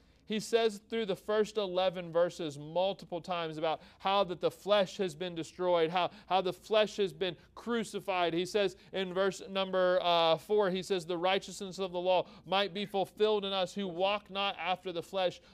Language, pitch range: English, 175-200 Hz